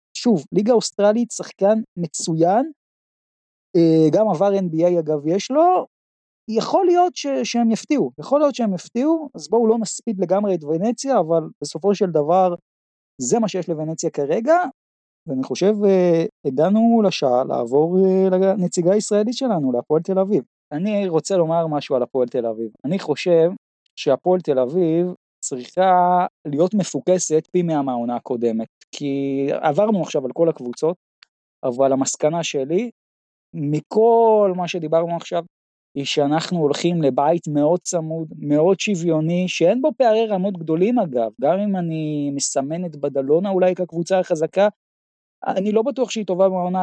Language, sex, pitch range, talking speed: Hebrew, male, 155-205 Hz, 140 wpm